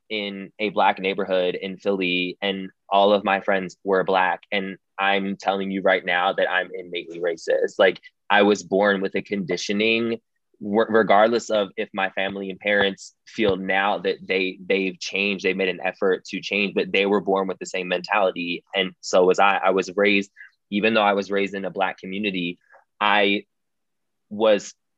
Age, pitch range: 20-39, 95-110 Hz